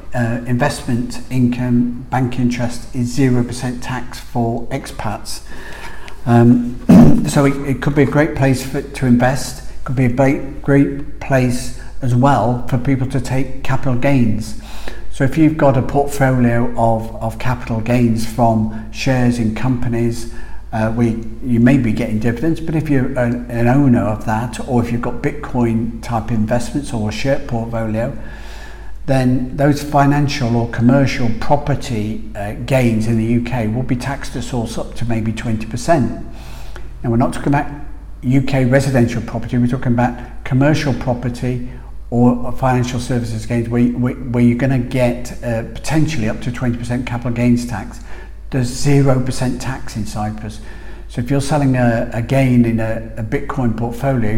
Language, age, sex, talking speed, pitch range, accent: English, 50-69, male, 155 wpm, 115-130 Hz, British